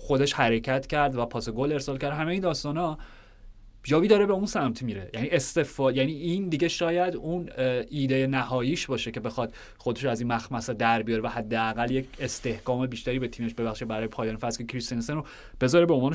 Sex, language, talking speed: male, Persian, 190 wpm